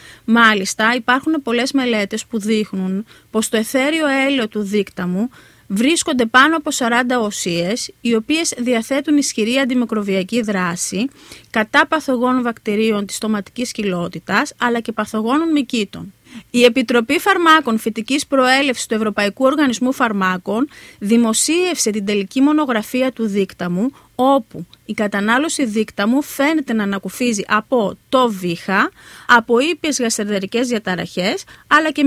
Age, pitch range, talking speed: 30-49, 215-290 Hz, 120 wpm